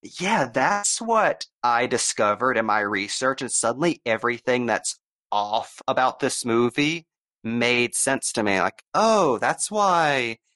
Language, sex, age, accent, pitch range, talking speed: English, male, 30-49, American, 120-170 Hz, 135 wpm